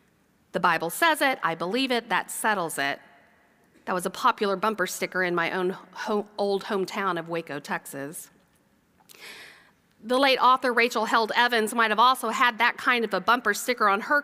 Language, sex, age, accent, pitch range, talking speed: English, female, 40-59, American, 200-280 Hz, 175 wpm